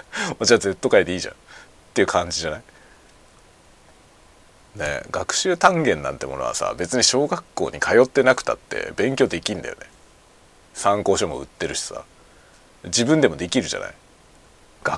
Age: 40-59